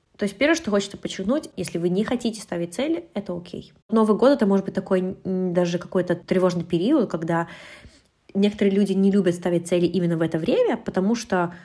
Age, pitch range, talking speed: 20-39, 170-210 Hz, 190 wpm